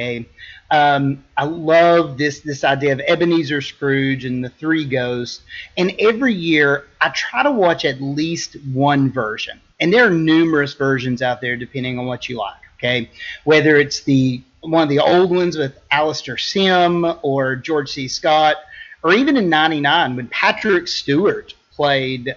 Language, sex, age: English, male, 30-49